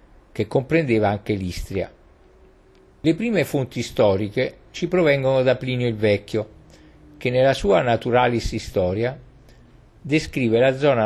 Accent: native